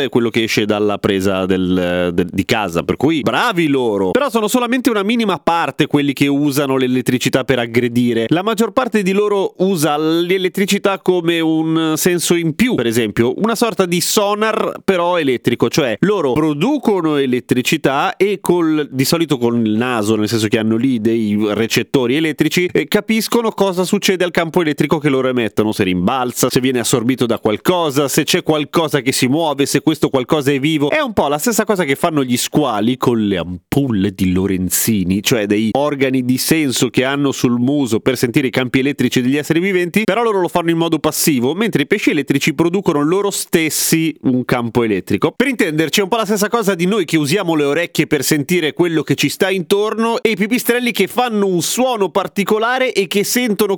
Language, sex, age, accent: Italian, male, 30-49, native